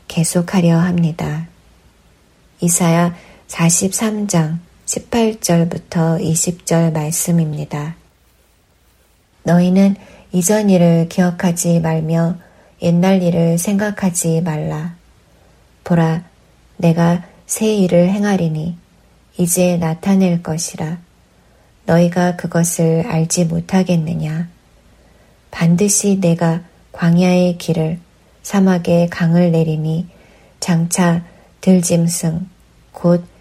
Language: Korean